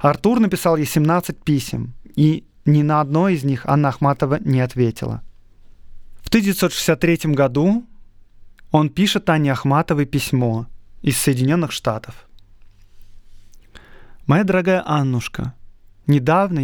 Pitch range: 125-160 Hz